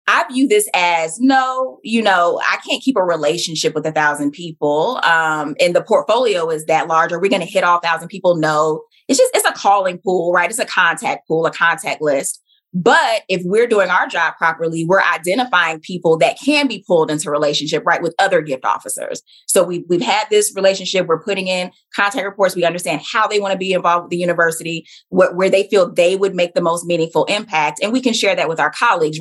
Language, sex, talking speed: English, female, 220 wpm